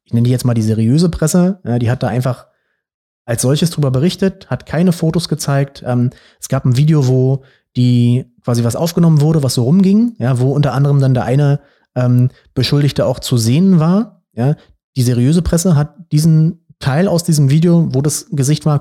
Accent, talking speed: German, 200 wpm